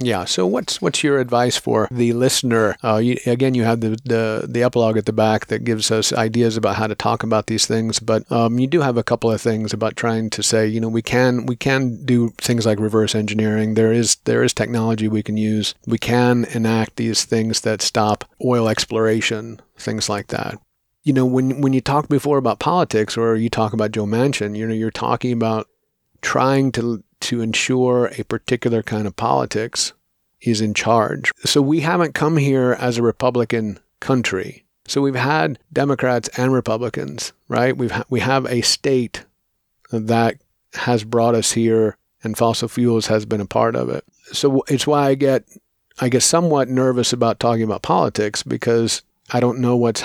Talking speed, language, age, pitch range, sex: 195 wpm, English, 50-69, 110-125 Hz, male